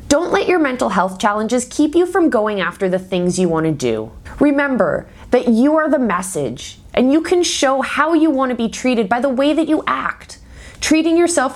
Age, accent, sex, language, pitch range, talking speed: 20-39, American, female, English, 190-275 Hz, 215 wpm